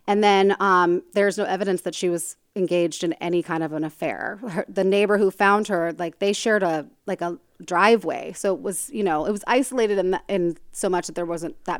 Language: English